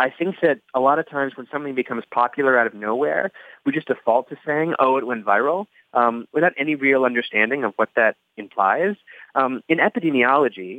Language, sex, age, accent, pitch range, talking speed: English, male, 30-49, American, 120-155 Hz, 195 wpm